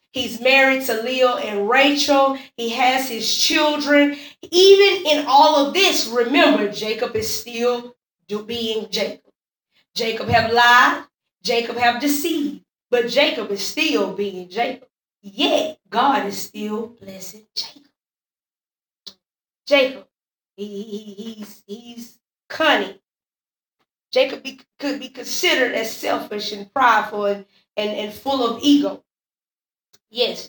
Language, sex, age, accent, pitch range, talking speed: English, female, 20-39, American, 215-275 Hz, 115 wpm